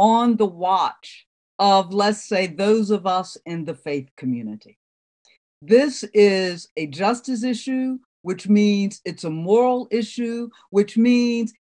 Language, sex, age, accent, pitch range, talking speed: English, female, 50-69, American, 190-250 Hz, 135 wpm